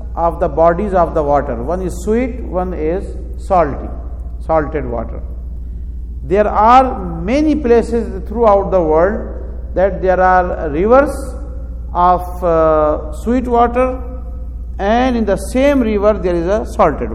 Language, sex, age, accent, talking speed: English, male, 50-69, Indian, 135 wpm